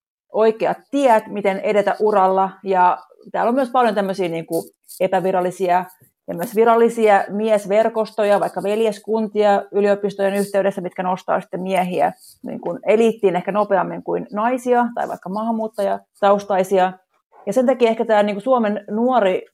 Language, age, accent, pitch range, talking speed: Finnish, 30-49, native, 190-230 Hz, 125 wpm